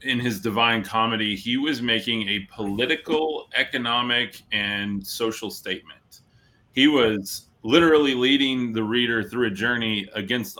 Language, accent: English, American